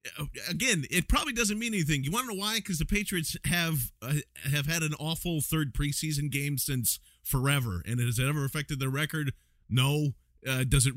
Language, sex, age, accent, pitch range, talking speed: English, male, 40-59, American, 120-155 Hz, 200 wpm